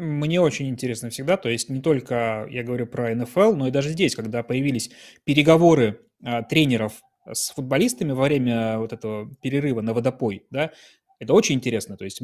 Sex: male